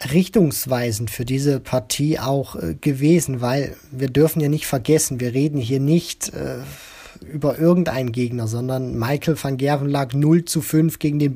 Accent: German